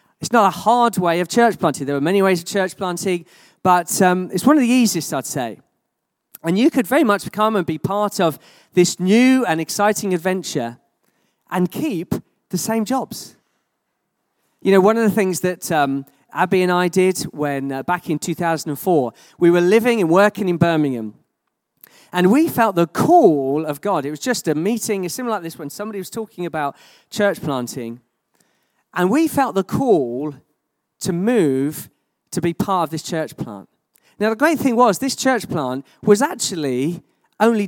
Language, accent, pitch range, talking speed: English, British, 155-220 Hz, 185 wpm